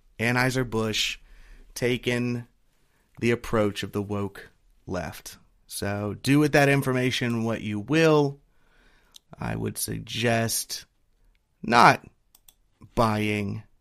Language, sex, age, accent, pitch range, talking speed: English, male, 30-49, American, 110-130 Hz, 90 wpm